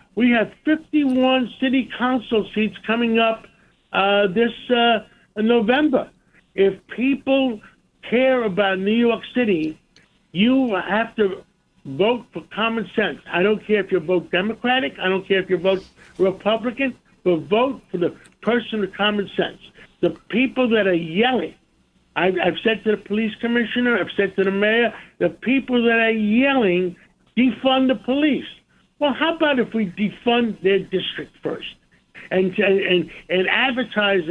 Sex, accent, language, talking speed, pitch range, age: male, American, English, 150 wpm, 195-245 Hz, 60-79